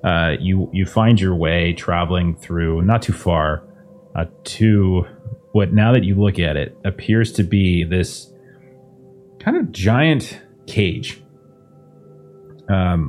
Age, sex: 30-49, male